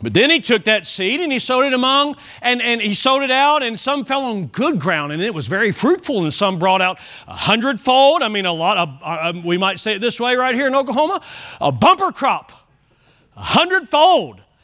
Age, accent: 40-59, American